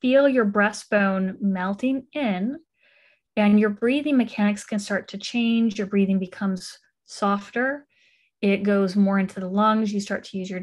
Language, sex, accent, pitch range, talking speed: English, female, American, 205-240 Hz, 160 wpm